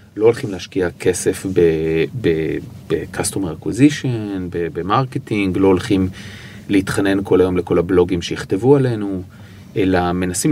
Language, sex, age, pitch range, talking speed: Hebrew, male, 30-49, 95-130 Hz, 120 wpm